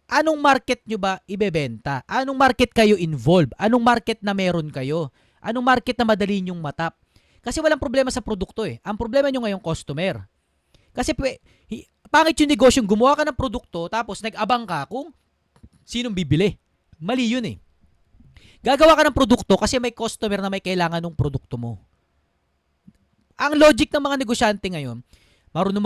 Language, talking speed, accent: Filipino, 160 wpm, native